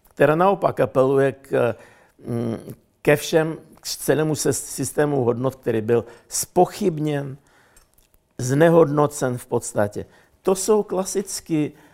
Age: 60-79